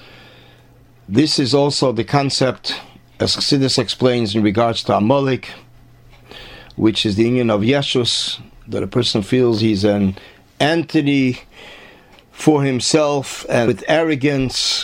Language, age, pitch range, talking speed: English, 40-59, 115-140 Hz, 120 wpm